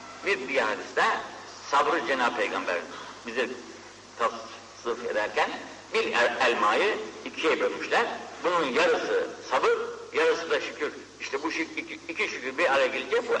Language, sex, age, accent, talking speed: Turkish, male, 60-79, native, 135 wpm